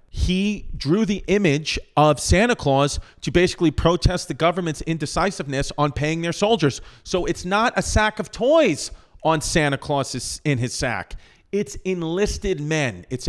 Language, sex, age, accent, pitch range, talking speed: English, male, 40-59, American, 120-160 Hz, 155 wpm